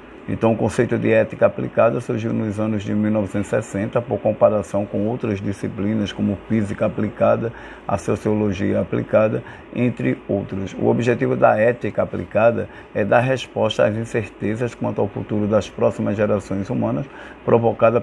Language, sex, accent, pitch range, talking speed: Portuguese, male, Brazilian, 105-125 Hz, 140 wpm